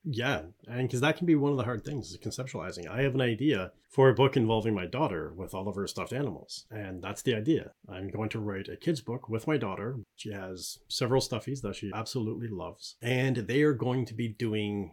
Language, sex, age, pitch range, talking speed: English, male, 30-49, 100-125 Hz, 235 wpm